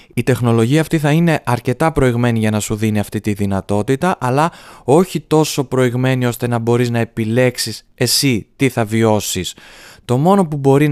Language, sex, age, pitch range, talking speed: Greek, male, 20-39, 115-155 Hz, 170 wpm